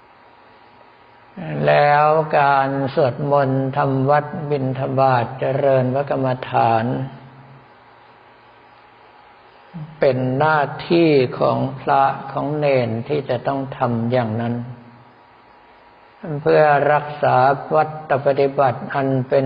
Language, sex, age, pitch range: Thai, male, 60-79, 120-140 Hz